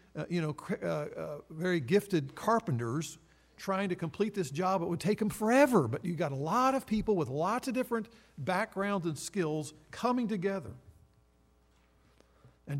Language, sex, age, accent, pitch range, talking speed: English, male, 50-69, American, 135-200 Hz, 165 wpm